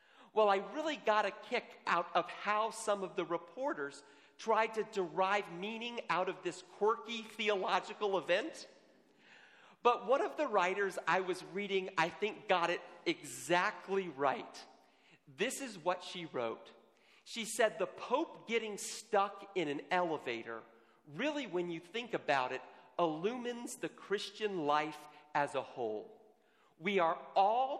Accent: American